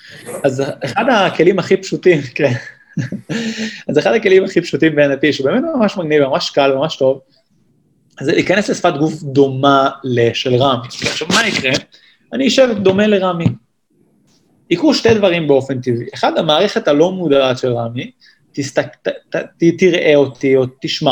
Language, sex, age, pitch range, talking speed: Hebrew, male, 30-49, 135-195 Hz, 135 wpm